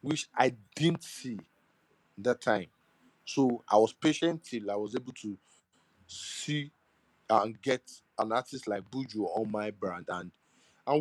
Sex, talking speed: male, 145 wpm